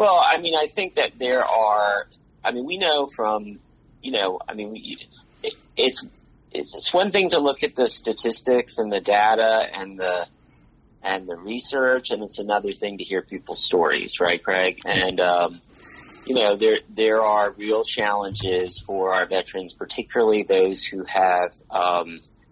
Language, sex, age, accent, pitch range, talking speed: English, male, 30-49, American, 95-110 Hz, 170 wpm